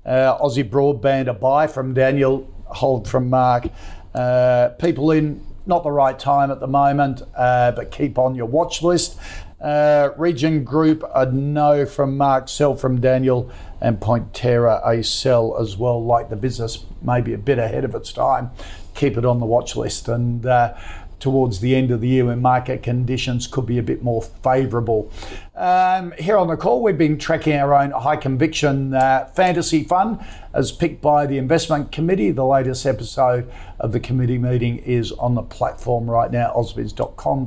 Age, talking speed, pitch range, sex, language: 50-69, 175 wpm, 120-145 Hz, male, English